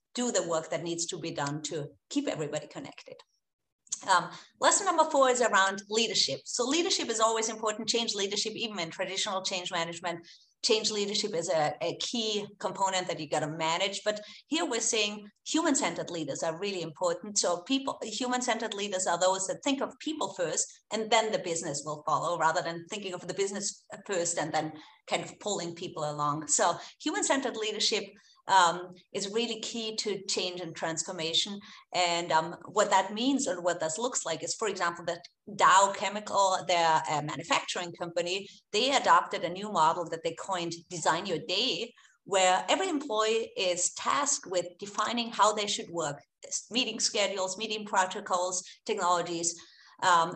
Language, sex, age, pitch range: English, female, 30-49, 170-220 Hz